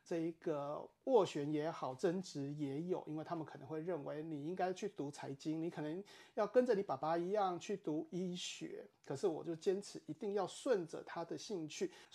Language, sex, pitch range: Chinese, male, 155-200 Hz